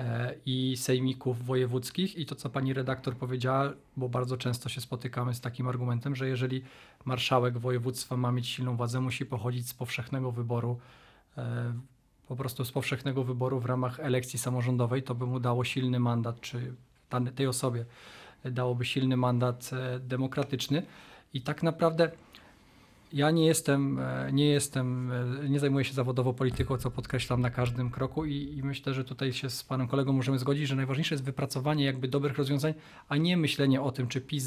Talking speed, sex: 165 wpm, male